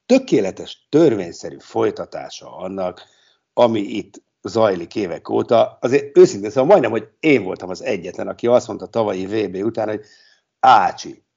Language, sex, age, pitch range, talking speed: Hungarian, male, 60-79, 95-140 Hz, 135 wpm